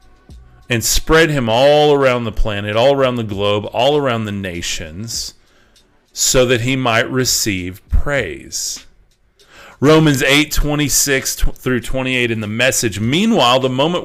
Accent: American